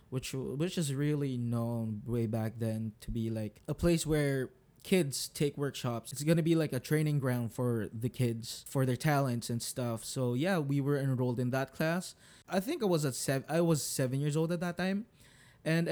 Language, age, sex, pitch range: English, 20-39, male, 120-150 Hz